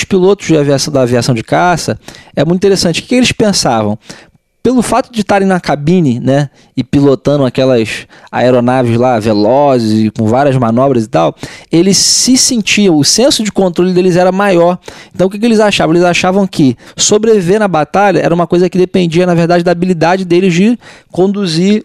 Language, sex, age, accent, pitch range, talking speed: Portuguese, male, 20-39, Brazilian, 135-185 Hz, 185 wpm